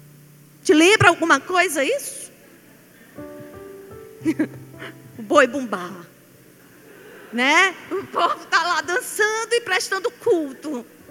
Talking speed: 90 wpm